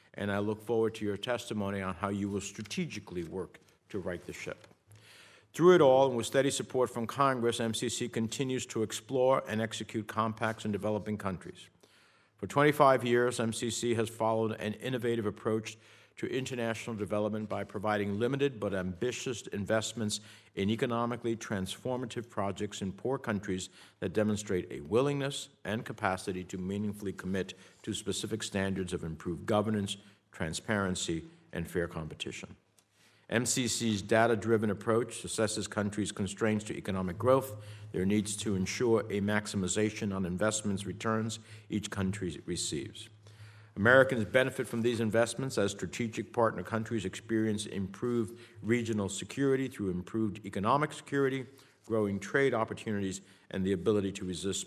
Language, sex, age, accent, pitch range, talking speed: English, male, 60-79, American, 100-115 Hz, 140 wpm